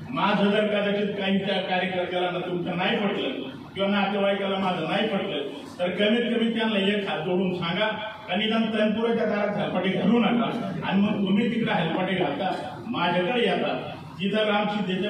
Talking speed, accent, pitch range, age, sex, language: 155 wpm, native, 180-210 Hz, 50-69, male, Marathi